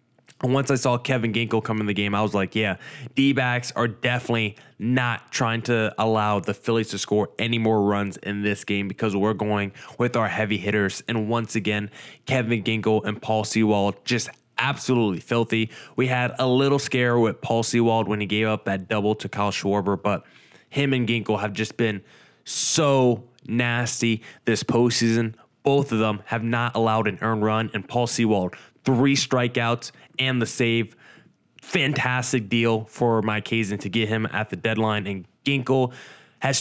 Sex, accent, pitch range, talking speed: male, American, 105-125 Hz, 175 wpm